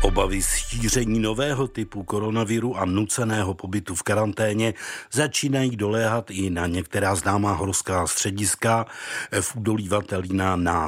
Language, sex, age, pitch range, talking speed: Czech, male, 50-69, 100-125 Hz, 120 wpm